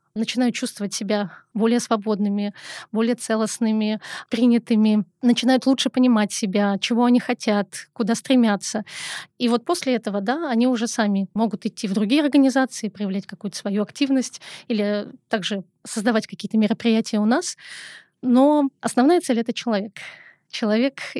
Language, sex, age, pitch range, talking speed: Russian, female, 20-39, 210-245 Hz, 135 wpm